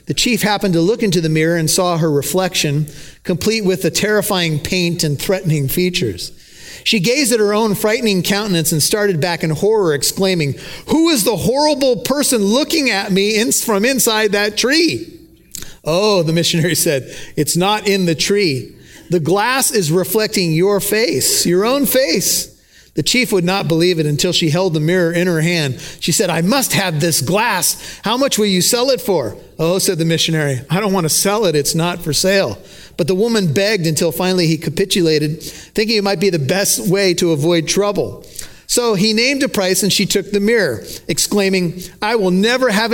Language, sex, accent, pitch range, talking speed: English, male, American, 170-215 Hz, 195 wpm